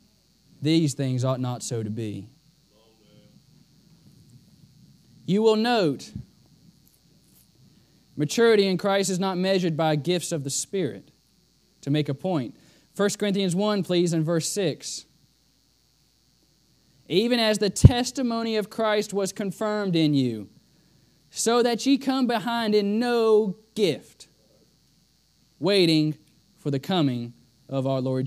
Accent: American